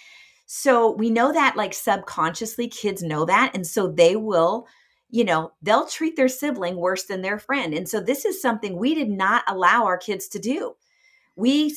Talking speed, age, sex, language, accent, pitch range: 190 wpm, 40-59, female, English, American, 165-255 Hz